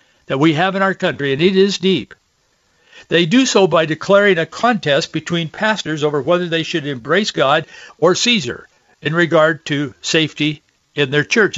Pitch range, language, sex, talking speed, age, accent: 140-180 Hz, English, male, 175 wpm, 60-79, American